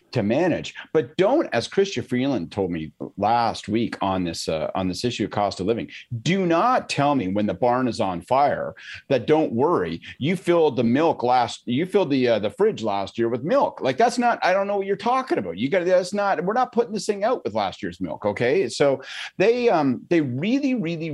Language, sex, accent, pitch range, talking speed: English, male, American, 115-195 Hz, 225 wpm